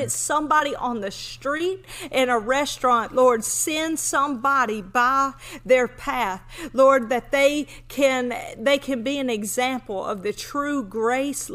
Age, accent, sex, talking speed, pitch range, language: 40-59, American, female, 135 wpm, 235-285 Hz, English